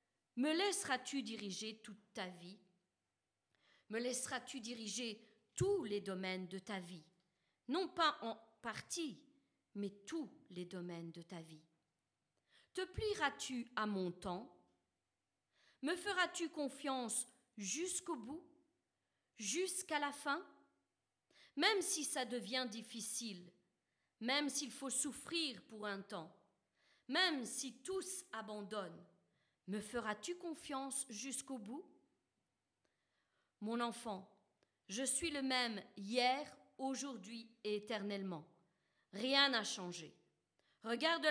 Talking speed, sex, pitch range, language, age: 110 wpm, female, 200-280 Hz, French, 40-59